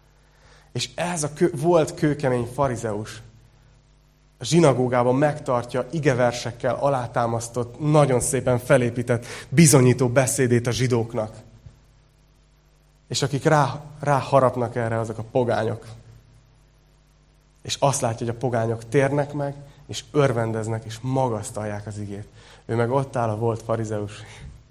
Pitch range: 120-140 Hz